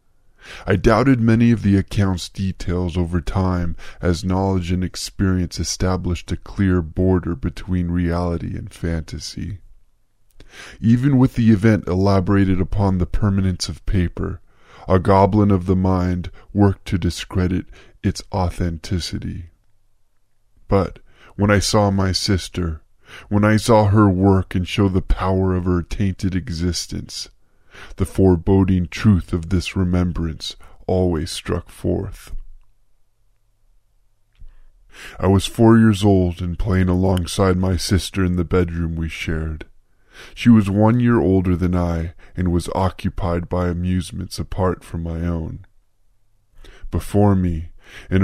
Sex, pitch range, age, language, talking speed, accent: female, 90-100 Hz, 20-39, English, 130 wpm, American